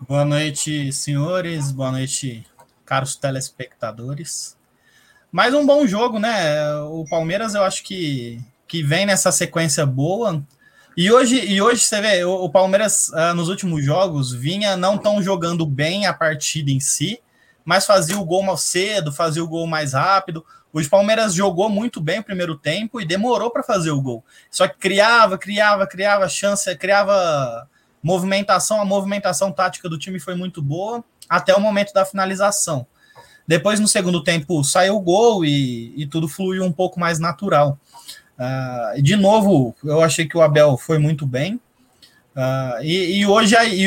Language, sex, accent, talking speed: Portuguese, male, Brazilian, 155 wpm